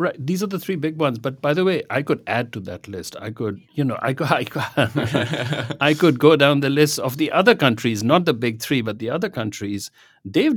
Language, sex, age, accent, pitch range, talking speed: English, male, 60-79, Indian, 100-145 Hz, 250 wpm